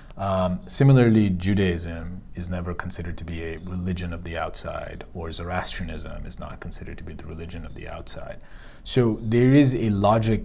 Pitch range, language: 85-105 Hz, English